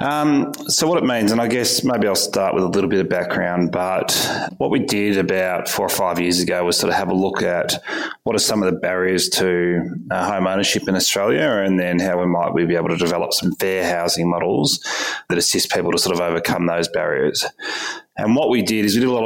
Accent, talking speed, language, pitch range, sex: Australian, 235 wpm, English, 90-95 Hz, male